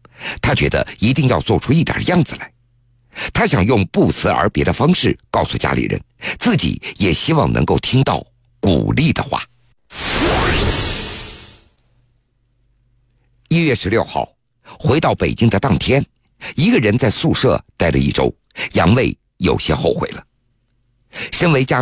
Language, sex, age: Chinese, male, 50-69